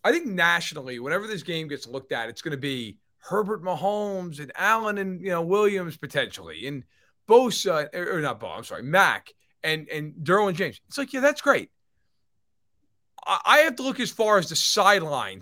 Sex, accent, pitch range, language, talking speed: male, American, 130-190 Hz, English, 190 wpm